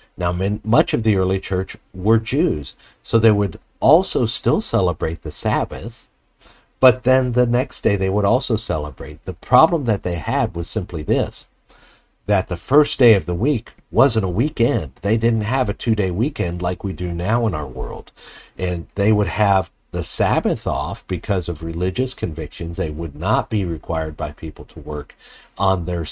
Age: 50-69